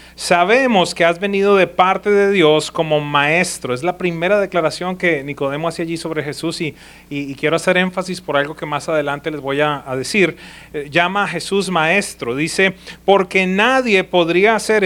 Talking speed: 185 wpm